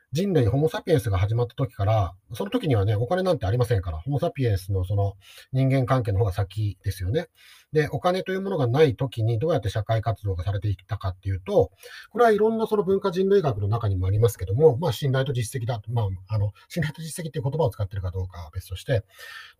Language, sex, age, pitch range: Japanese, male, 40-59, 100-160 Hz